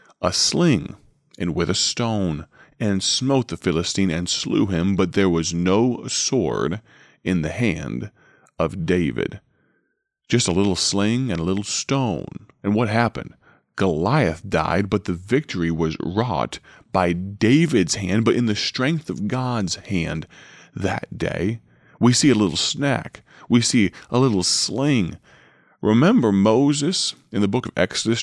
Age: 30-49